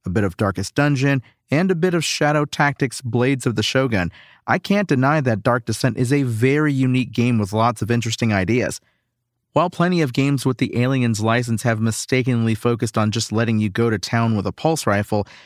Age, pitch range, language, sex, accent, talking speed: 40-59, 110-135 Hz, English, male, American, 205 wpm